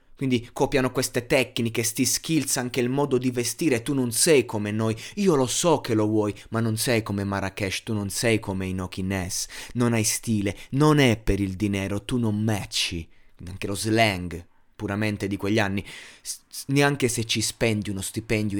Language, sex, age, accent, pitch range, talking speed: Italian, male, 20-39, native, 105-125 Hz, 180 wpm